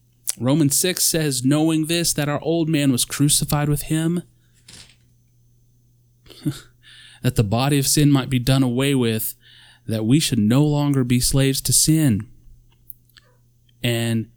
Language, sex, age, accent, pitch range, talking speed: English, male, 30-49, American, 120-150 Hz, 140 wpm